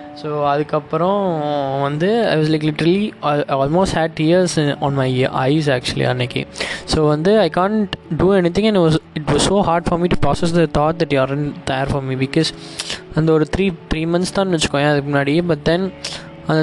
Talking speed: 190 wpm